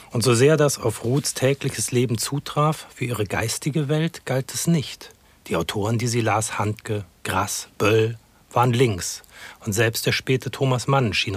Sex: male